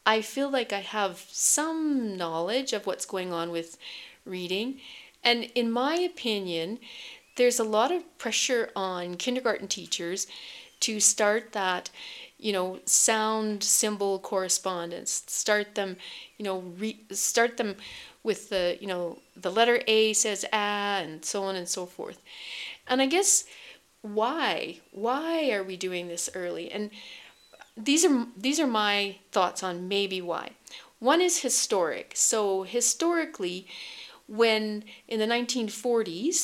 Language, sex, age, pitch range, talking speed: English, female, 40-59, 195-255 Hz, 140 wpm